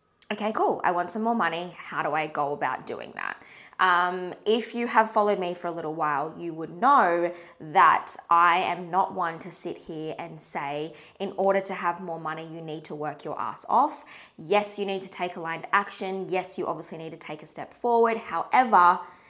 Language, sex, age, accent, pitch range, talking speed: English, female, 20-39, Australian, 165-210 Hz, 210 wpm